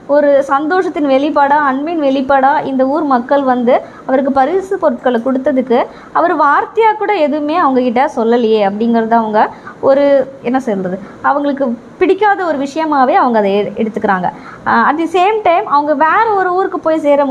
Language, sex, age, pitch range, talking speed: Tamil, male, 20-39, 235-315 Hz, 140 wpm